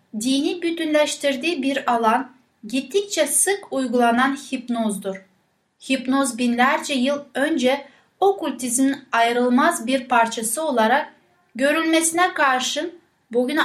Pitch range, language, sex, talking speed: 235-290 Hz, Turkish, female, 90 wpm